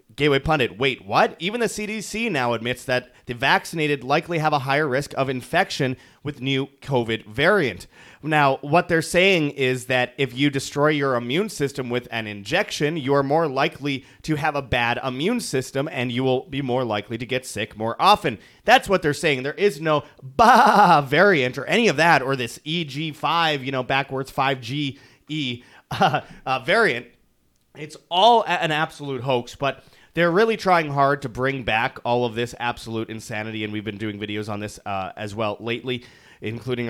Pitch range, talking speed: 120-155 Hz, 180 wpm